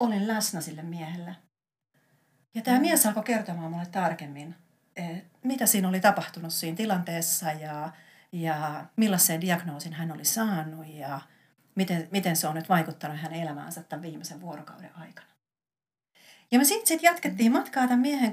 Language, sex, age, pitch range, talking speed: Finnish, female, 40-59, 170-215 Hz, 145 wpm